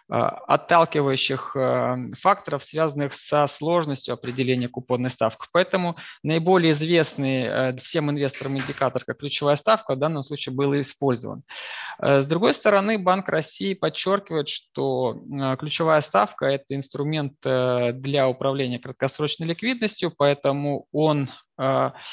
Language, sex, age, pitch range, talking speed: Russian, male, 20-39, 130-160 Hz, 110 wpm